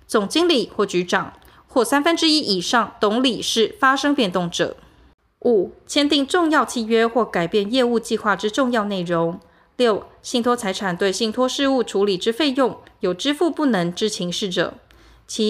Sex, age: female, 20-39